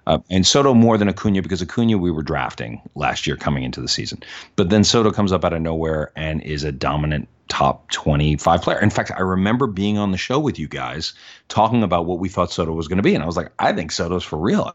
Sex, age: male, 40-59